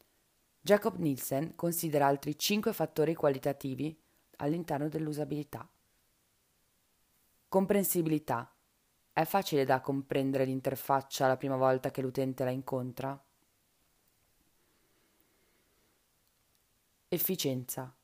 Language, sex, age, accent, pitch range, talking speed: Italian, female, 20-39, native, 130-155 Hz, 75 wpm